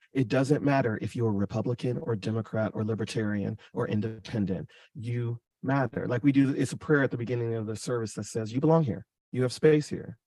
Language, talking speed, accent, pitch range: English, 210 wpm, American, 115-155 Hz